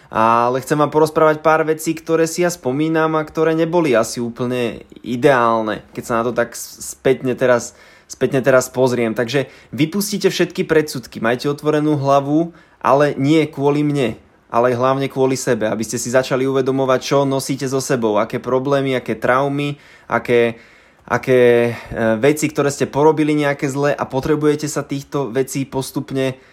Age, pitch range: 20-39, 125-145 Hz